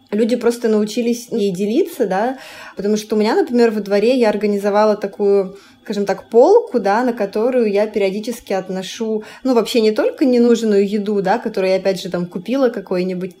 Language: Russian